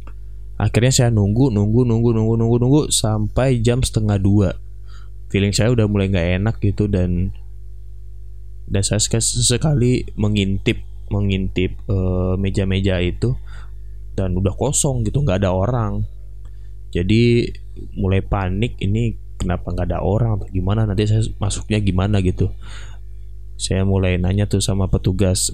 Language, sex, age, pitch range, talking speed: Indonesian, male, 20-39, 100-110 Hz, 130 wpm